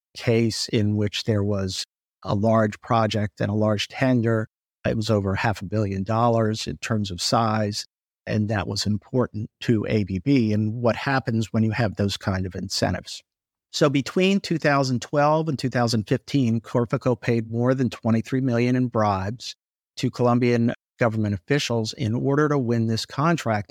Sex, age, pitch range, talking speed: male, 50-69, 105-125 Hz, 155 wpm